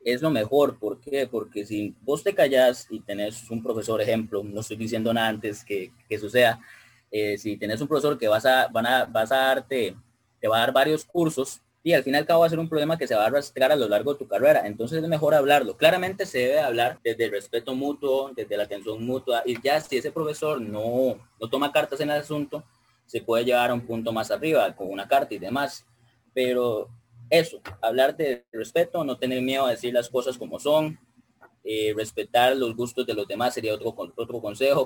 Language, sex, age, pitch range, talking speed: Spanish, male, 20-39, 115-135 Hz, 225 wpm